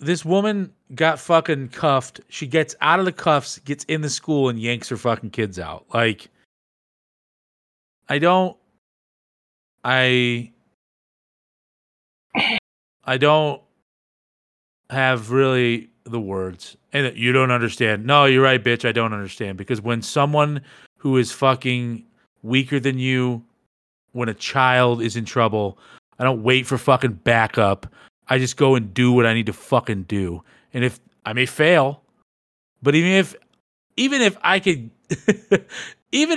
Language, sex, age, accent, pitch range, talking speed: English, male, 40-59, American, 115-150 Hz, 145 wpm